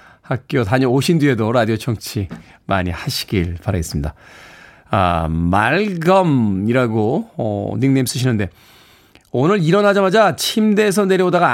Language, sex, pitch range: Korean, male, 110-180 Hz